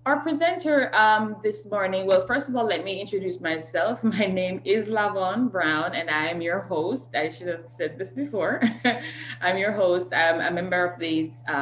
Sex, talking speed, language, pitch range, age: female, 200 wpm, English, 135-185 Hz, 20-39